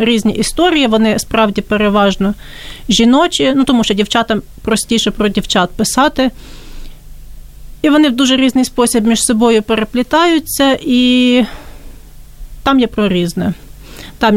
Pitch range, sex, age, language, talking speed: 200-235 Hz, female, 30-49, Ukrainian, 120 wpm